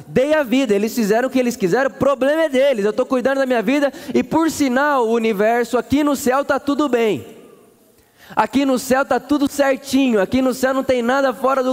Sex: male